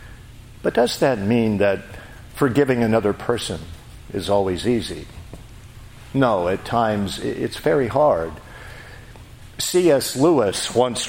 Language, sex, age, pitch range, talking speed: English, male, 50-69, 105-130 Hz, 110 wpm